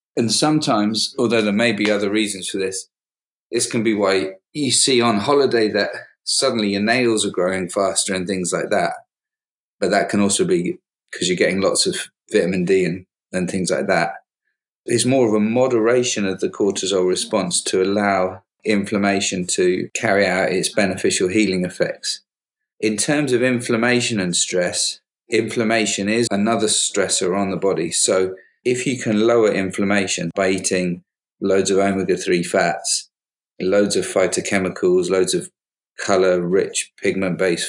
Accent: British